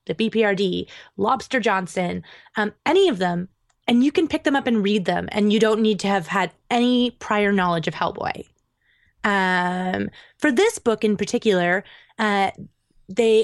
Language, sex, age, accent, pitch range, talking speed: English, female, 20-39, American, 185-230 Hz, 165 wpm